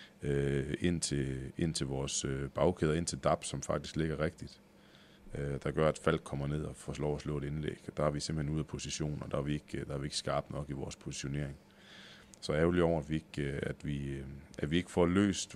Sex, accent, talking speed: male, native, 230 wpm